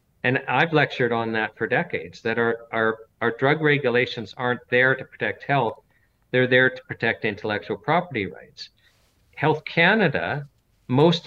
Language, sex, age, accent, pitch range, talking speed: English, male, 50-69, American, 115-145 Hz, 150 wpm